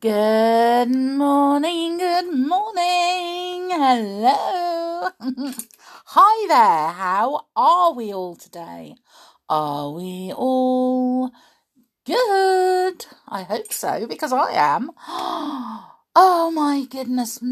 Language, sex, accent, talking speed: English, female, British, 85 wpm